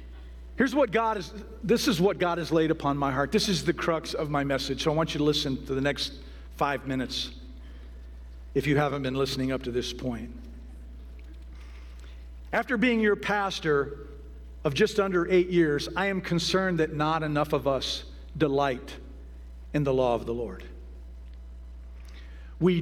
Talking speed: 170 wpm